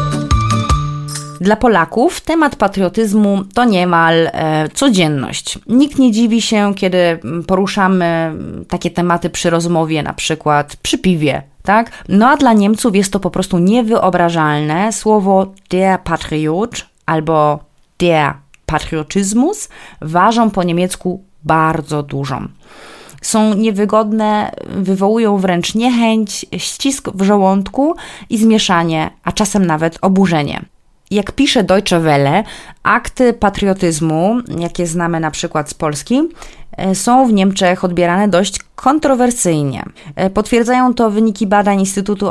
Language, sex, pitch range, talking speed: Polish, female, 165-215 Hz, 115 wpm